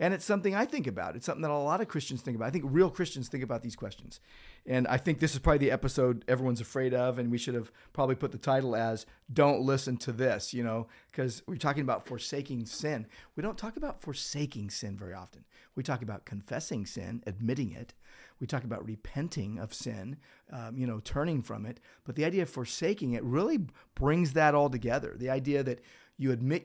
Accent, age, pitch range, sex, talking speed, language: American, 40-59, 120-150 Hz, male, 220 wpm, English